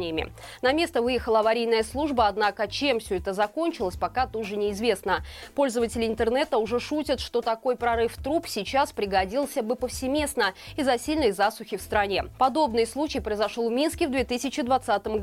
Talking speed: 145 wpm